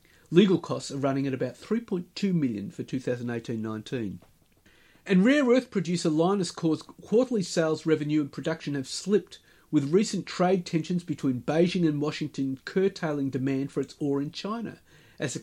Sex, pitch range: male, 135-175 Hz